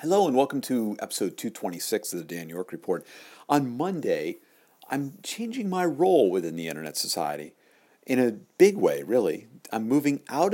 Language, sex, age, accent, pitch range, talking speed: English, male, 50-69, American, 100-150 Hz, 165 wpm